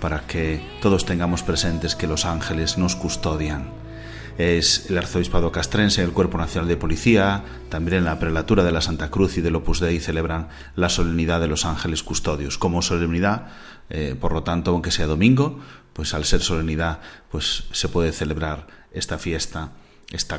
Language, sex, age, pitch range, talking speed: Spanish, male, 30-49, 80-95 Hz, 170 wpm